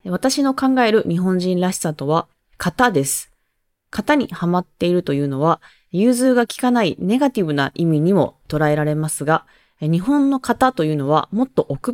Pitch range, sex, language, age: 150-230 Hz, female, Japanese, 20-39